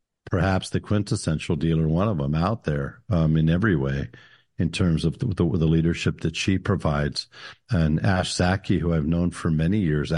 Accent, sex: American, male